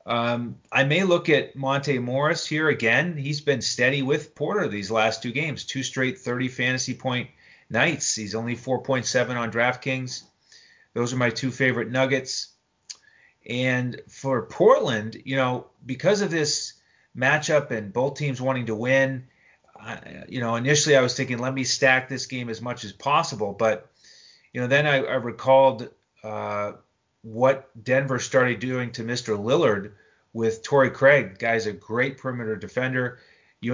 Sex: male